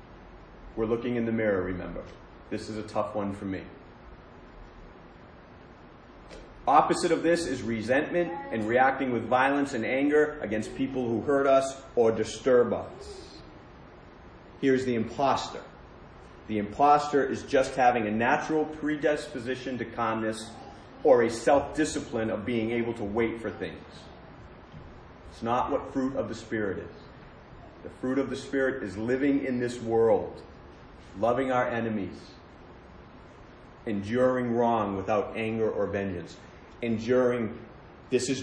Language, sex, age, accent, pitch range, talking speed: English, male, 40-59, American, 110-135 Hz, 135 wpm